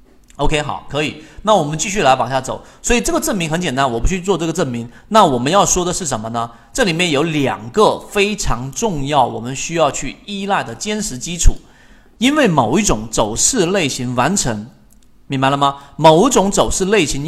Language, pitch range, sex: Chinese, 125-170 Hz, male